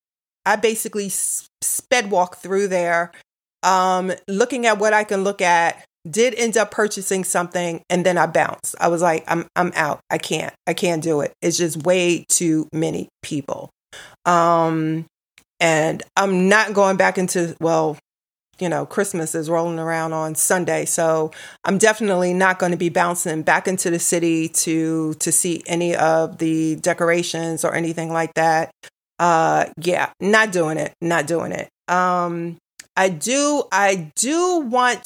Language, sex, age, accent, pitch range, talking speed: English, female, 30-49, American, 170-200 Hz, 160 wpm